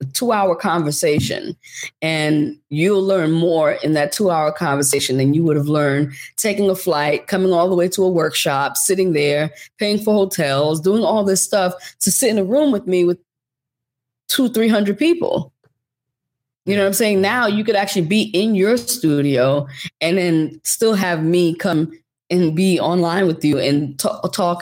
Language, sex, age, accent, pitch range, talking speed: English, female, 20-39, American, 150-195 Hz, 175 wpm